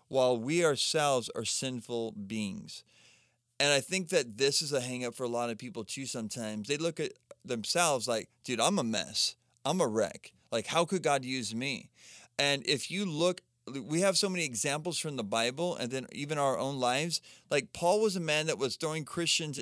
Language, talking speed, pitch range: English, 200 wpm, 125-160 Hz